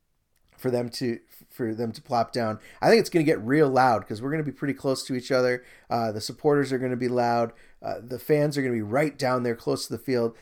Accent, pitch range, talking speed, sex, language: American, 125-180 Hz, 275 wpm, male, English